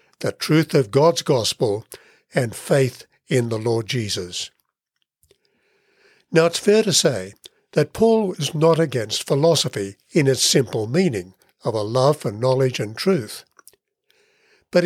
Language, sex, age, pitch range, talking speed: English, male, 60-79, 130-170 Hz, 135 wpm